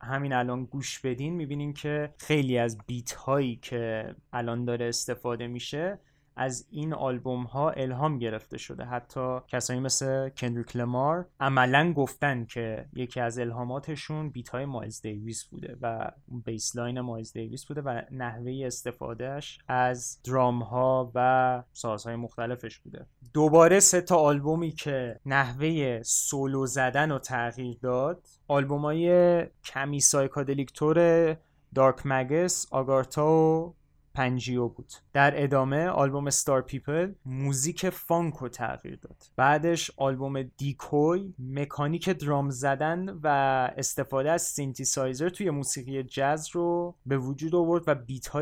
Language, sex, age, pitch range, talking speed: Persian, male, 20-39, 125-150 Hz, 130 wpm